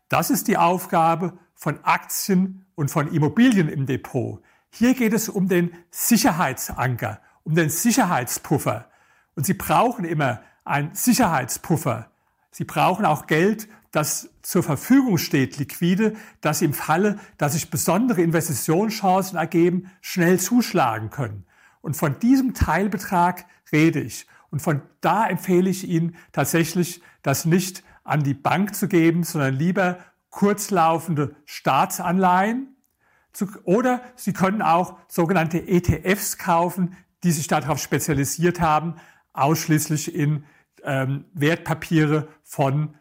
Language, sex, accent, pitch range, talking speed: German, male, German, 145-185 Hz, 120 wpm